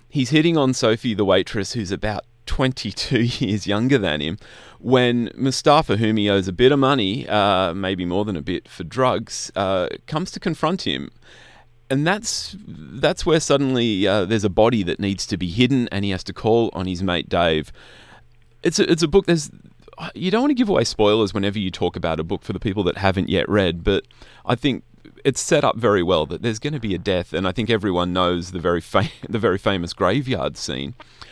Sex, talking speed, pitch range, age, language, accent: male, 215 wpm, 100-140 Hz, 30-49, English, Australian